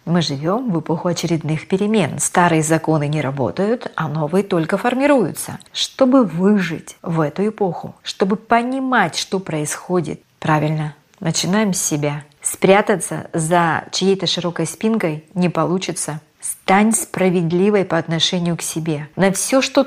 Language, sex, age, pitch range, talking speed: Russian, female, 30-49, 155-195 Hz, 130 wpm